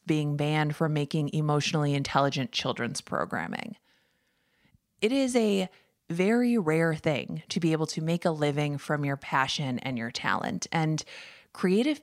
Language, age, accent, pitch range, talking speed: English, 20-39, American, 145-180 Hz, 145 wpm